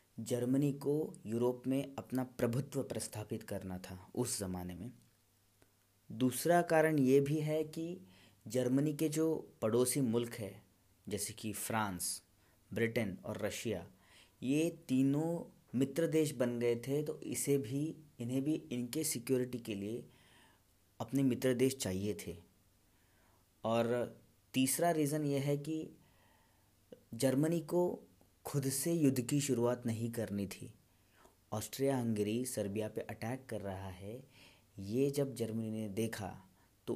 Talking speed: 130 wpm